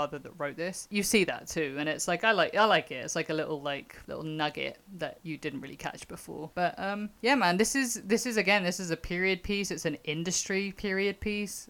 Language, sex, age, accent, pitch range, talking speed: English, female, 30-49, British, 145-180 Hz, 240 wpm